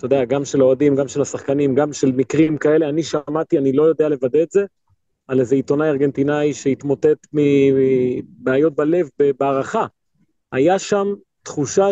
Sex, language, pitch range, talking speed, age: male, Hebrew, 135-180 Hz, 155 wpm, 30-49